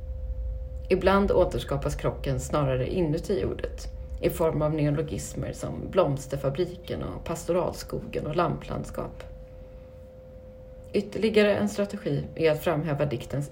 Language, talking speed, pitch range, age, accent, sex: Swedish, 100 wpm, 105-170 Hz, 30-49, native, female